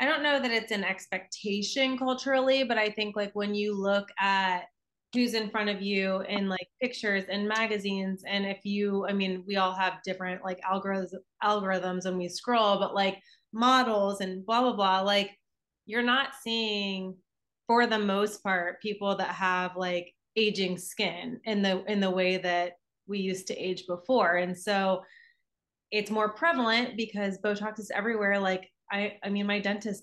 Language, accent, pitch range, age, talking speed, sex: English, American, 185-215 Hz, 20-39, 175 wpm, female